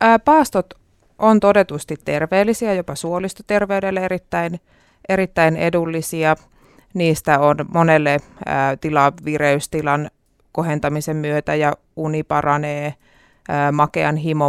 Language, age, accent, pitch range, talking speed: Finnish, 30-49, native, 145-170 Hz, 85 wpm